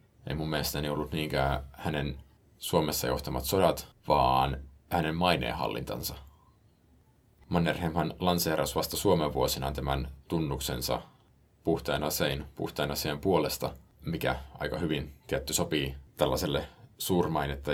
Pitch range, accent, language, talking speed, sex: 70-85 Hz, native, Finnish, 95 wpm, male